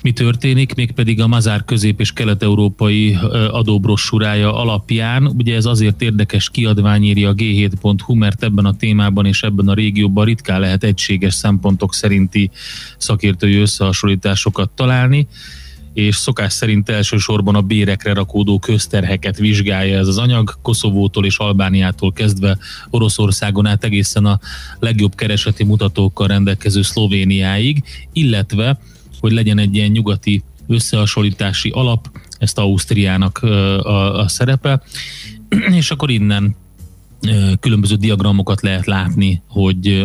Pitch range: 100-110 Hz